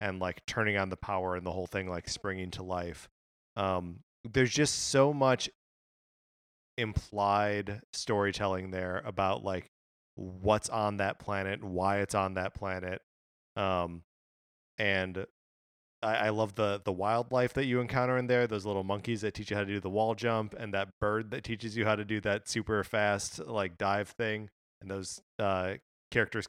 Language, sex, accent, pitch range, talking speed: English, male, American, 95-115 Hz, 175 wpm